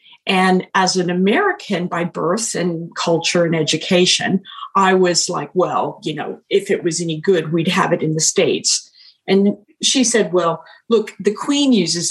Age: 50-69